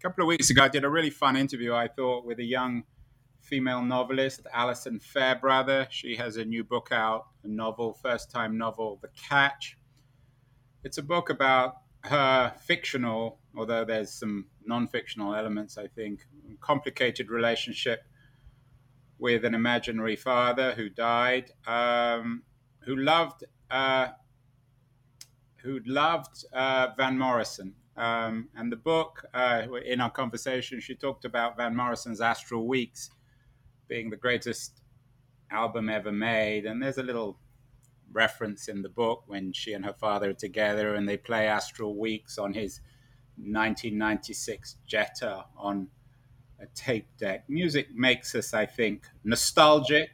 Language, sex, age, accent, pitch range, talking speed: English, male, 30-49, British, 115-130 Hz, 140 wpm